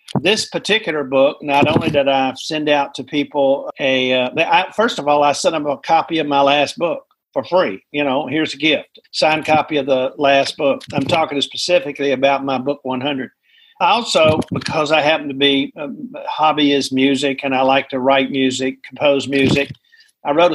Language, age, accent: English, 50-69, American